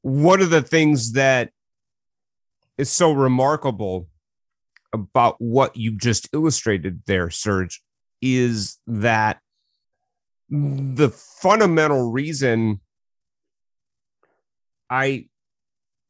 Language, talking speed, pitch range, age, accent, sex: English, 80 wpm, 105-135 Hz, 40-59, American, male